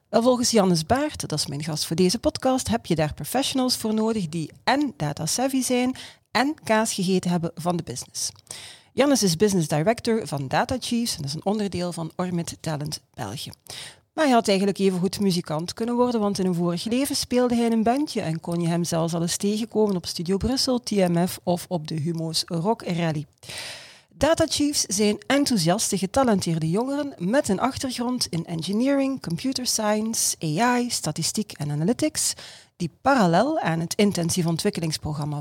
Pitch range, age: 165-235 Hz, 40-59